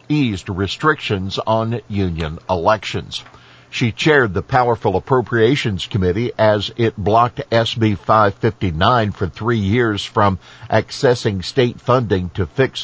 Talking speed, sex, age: 115 wpm, male, 50-69